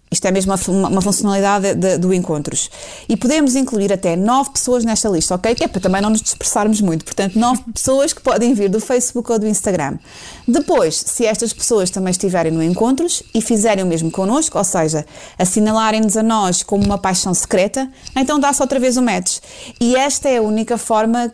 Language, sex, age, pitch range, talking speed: Portuguese, female, 30-49, 195-245 Hz, 195 wpm